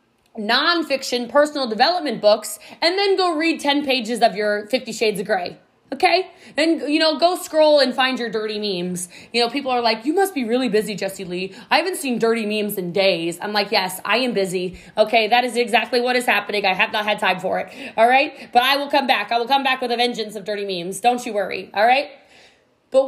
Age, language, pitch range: 20-39, English, 195-255 Hz